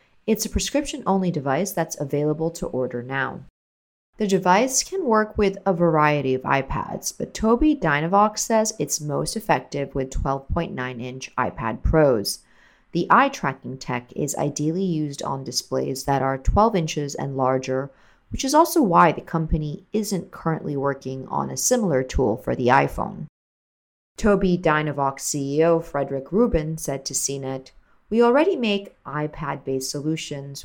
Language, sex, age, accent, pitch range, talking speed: English, female, 40-59, American, 140-210 Hz, 145 wpm